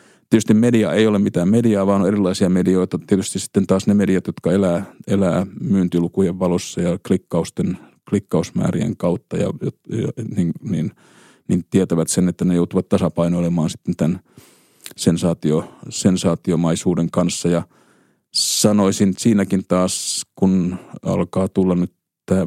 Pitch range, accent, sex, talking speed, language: 85-100 Hz, native, male, 135 wpm, Finnish